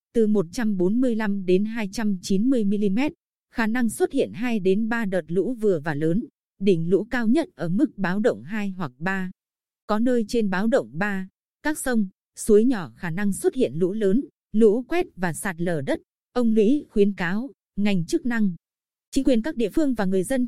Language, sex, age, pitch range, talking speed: Vietnamese, female, 20-39, 180-235 Hz, 180 wpm